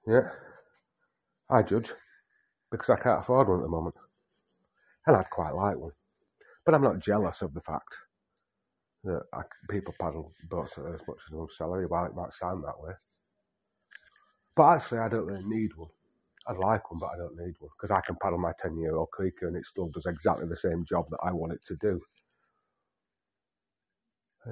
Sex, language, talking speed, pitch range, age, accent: male, English, 195 wpm, 85-115 Hz, 40-59, British